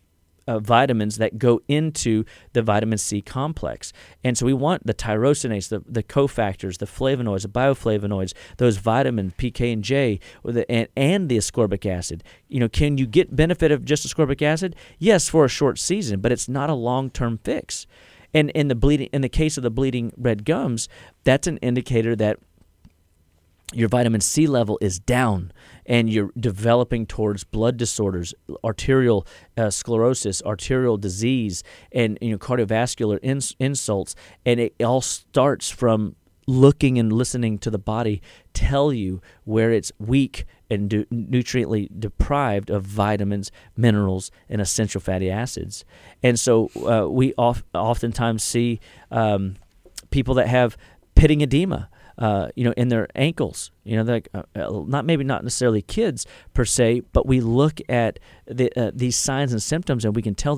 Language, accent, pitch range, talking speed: English, American, 105-130 Hz, 165 wpm